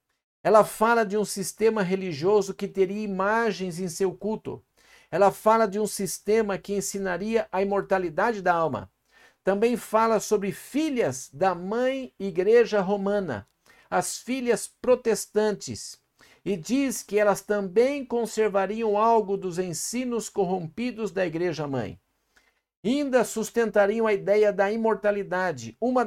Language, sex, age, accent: Portuguese, male, 60-79, Brazilian